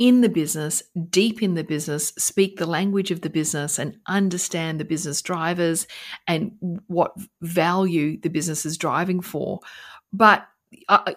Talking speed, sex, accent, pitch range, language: 150 wpm, female, Australian, 170-200 Hz, English